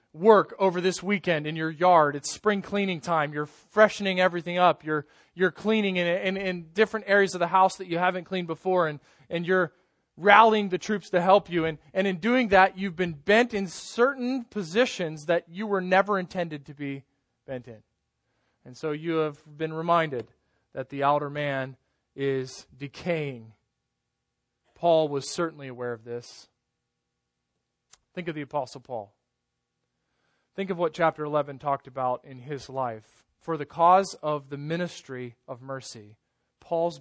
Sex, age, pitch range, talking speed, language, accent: male, 20-39, 135-180 Hz, 165 wpm, English, American